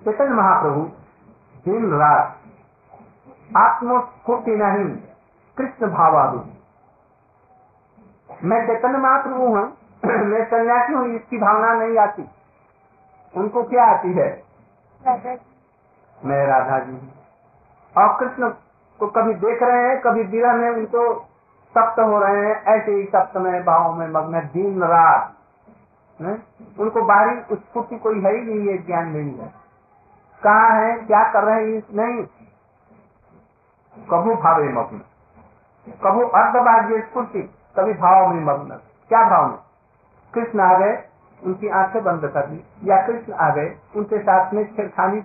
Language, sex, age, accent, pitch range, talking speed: Hindi, male, 50-69, native, 185-235 Hz, 130 wpm